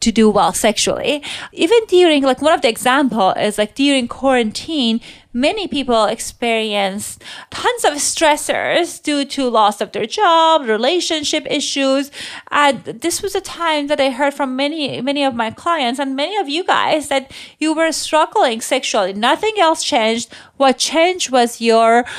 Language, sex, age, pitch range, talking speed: English, female, 30-49, 205-280 Hz, 160 wpm